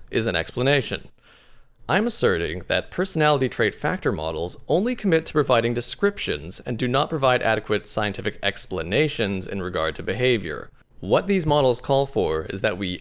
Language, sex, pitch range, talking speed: English, male, 100-145 Hz, 155 wpm